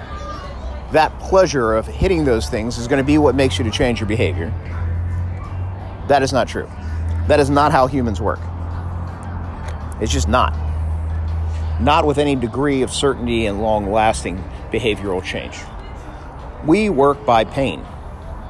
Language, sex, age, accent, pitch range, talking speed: English, male, 50-69, American, 85-140 Hz, 145 wpm